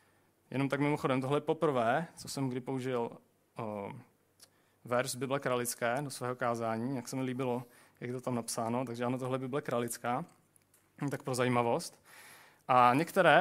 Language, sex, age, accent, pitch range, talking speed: Czech, male, 30-49, native, 120-145 Hz, 160 wpm